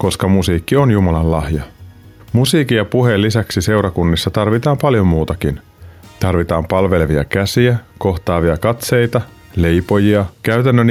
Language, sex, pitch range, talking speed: Finnish, male, 85-115 Hz, 110 wpm